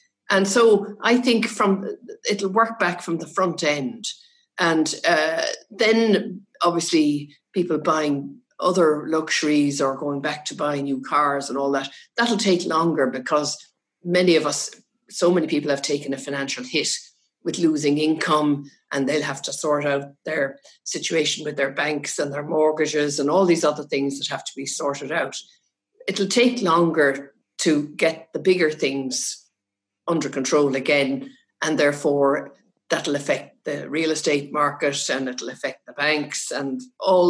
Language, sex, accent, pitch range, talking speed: English, female, Irish, 140-195 Hz, 160 wpm